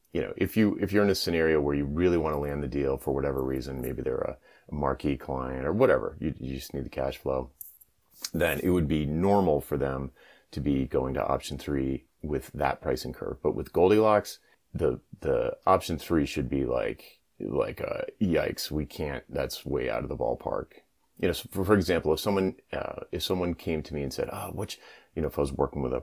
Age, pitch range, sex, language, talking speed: 30-49, 70-100 Hz, male, English, 225 wpm